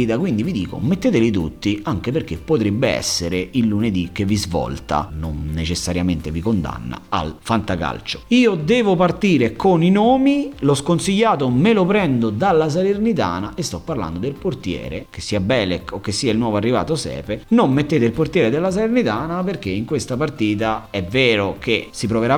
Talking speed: 170 wpm